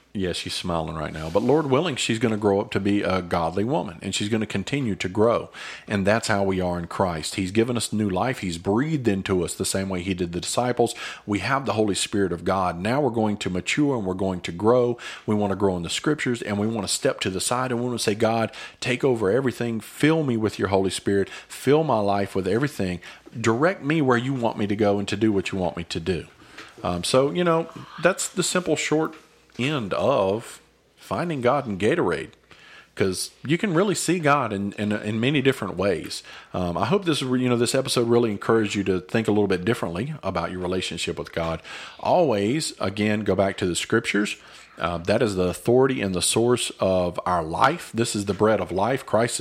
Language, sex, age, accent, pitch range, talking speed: English, male, 40-59, American, 95-120 Hz, 230 wpm